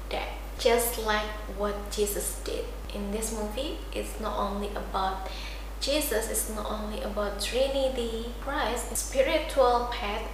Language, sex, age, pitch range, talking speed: English, female, 20-39, 220-275 Hz, 120 wpm